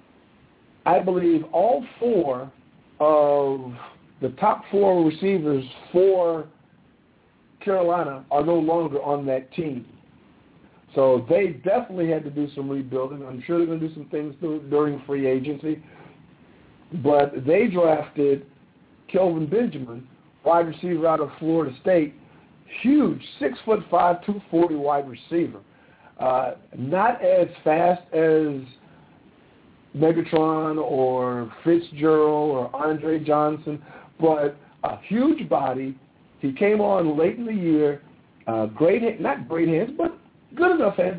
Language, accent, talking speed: English, American, 125 wpm